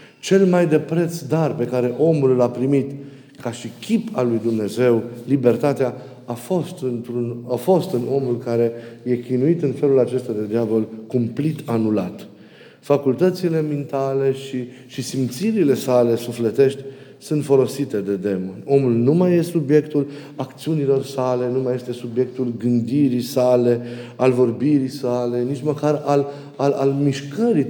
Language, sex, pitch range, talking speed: Romanian, male, 125-150 Hz, 145 wpm